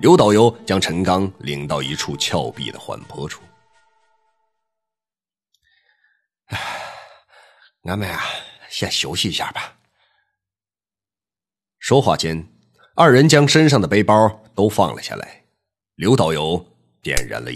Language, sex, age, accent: Chinese, male, 30-49, native